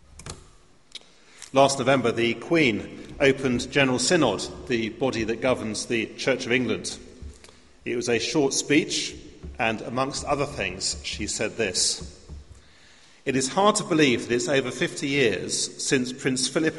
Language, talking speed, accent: English, 145 wpm, British